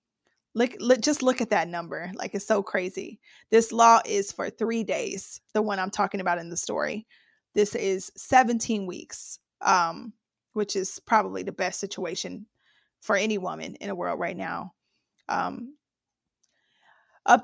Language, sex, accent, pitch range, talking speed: English, female, American, 195-235 Hz, 160 wpm